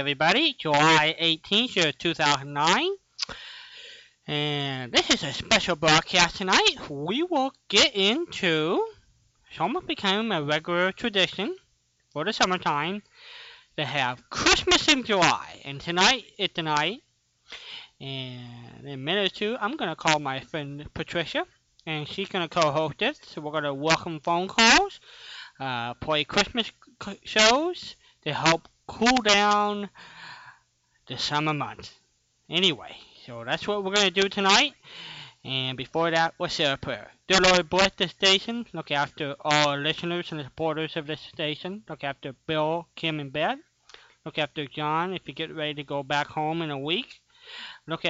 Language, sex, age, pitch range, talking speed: English, male, 20-39, 150-205 Hz, 150 wpm